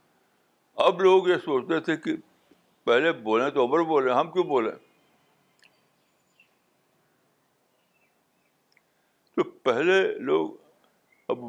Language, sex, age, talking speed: Urdu, male, 60-79, 95 wpm